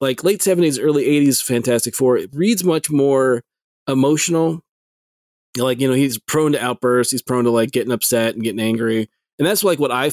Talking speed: 195 wpm